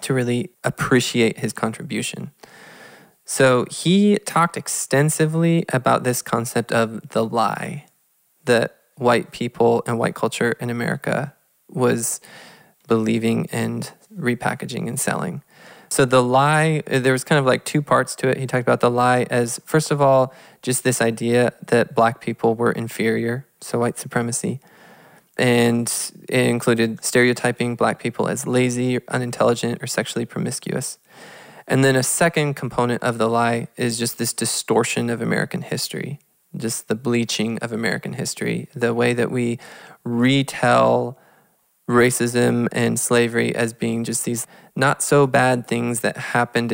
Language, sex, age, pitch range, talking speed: English, male, 20-39, 115-130 Hz, 140 wpm